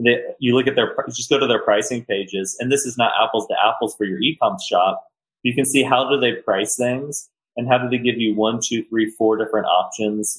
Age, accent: 30-49, American